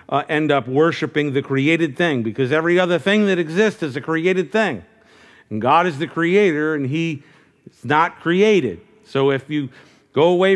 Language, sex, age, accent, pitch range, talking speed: English, male, 50-69, American, 130-175 Hz, 180 wpm